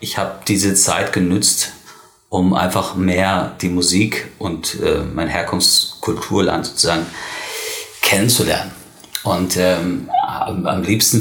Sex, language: male, German